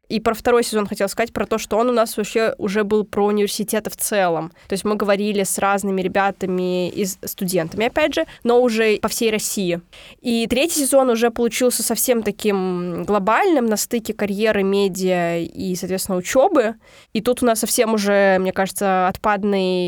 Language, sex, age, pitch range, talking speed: Russian, female, 20-39, 200-235 Hz, 180 wpm